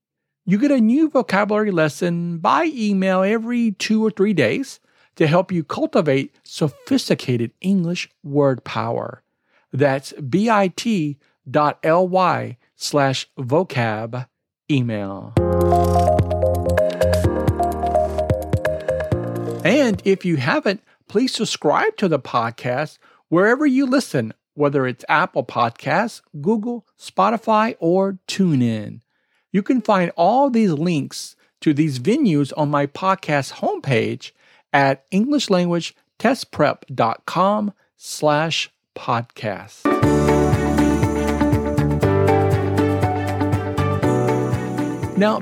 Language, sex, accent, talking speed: English, male, American, 85 wpm